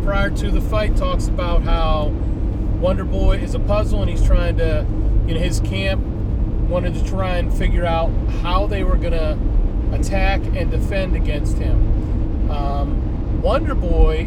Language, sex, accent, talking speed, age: English, male, American, 160 wpm, 40-59